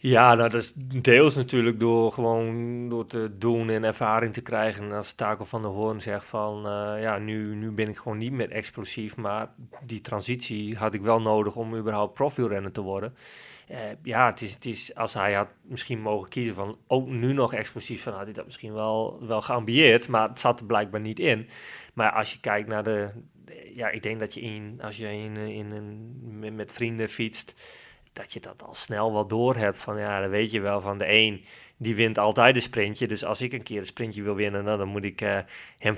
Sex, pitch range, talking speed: male, 105-120 Hz, 225 wpm